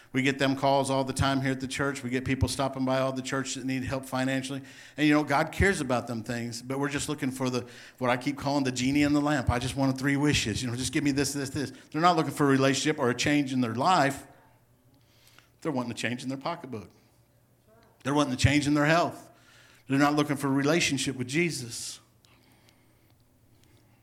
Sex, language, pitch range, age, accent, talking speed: male, English, 115-135 Hz, 50-69, American, 230 wpm